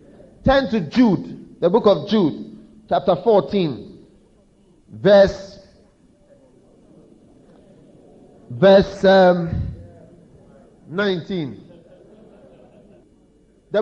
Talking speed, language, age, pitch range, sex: 55 wpm, English, 50-69, 190-270 Hz, male